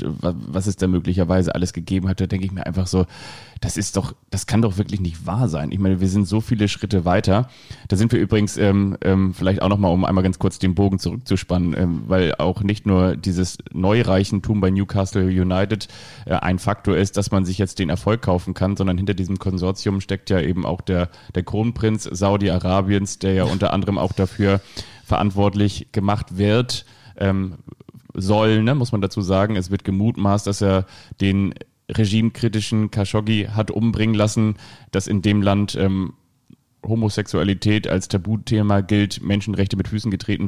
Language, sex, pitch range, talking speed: German, male, 95-110 Hz, 175 wpm